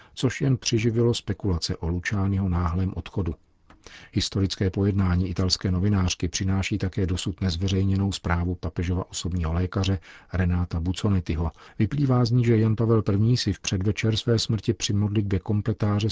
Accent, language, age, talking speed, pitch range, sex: native, Czech, 40-59, 140 wpm, 90-105 Hz, male